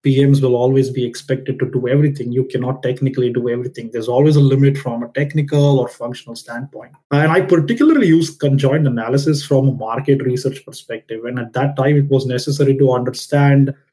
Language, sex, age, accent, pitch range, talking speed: English, male, 20-39, Indian, 130-145 Hz, 185 wpm